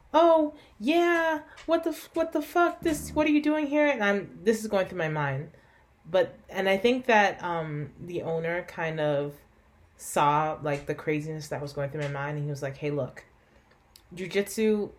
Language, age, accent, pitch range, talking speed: English, 20-39, American, 150-190 Hz, 190 wpm